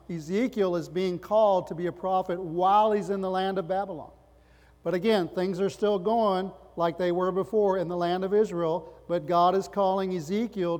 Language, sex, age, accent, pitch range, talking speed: English, male, 40-59, American, 175-205 Hz, 195 wpm